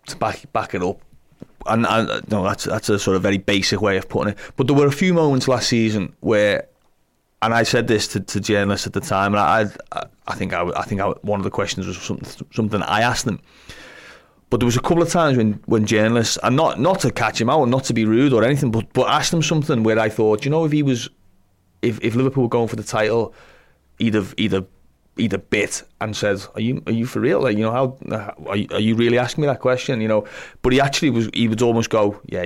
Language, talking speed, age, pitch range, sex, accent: English, 255 wpm, 30-49, 100-120 Hz, male, British